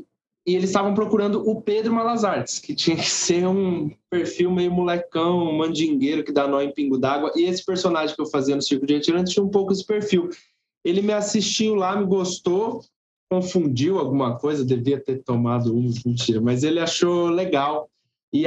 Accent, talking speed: Brazilian, 185 wpm